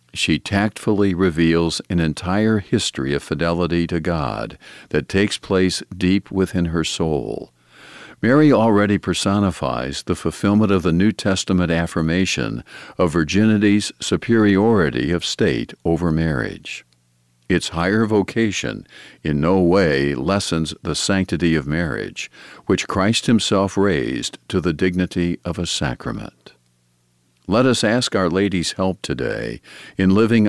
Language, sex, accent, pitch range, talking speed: English, male, American, 80-100 Hz, 125 wpm